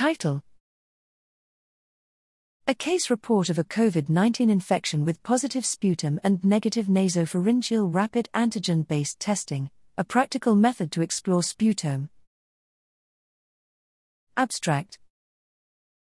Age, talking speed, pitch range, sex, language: 40-59, 90 wpm, 165-220 Hz, female, English